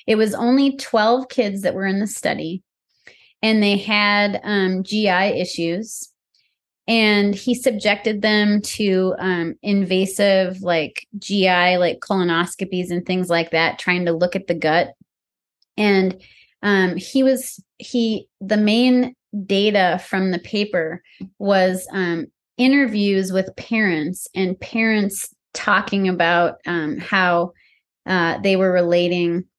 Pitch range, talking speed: 175-205 Hz, 130 wpm